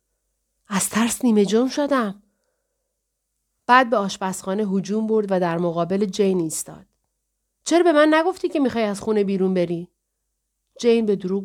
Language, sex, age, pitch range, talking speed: Persian, female, 40-59, 190-280 Hz, 145 wpm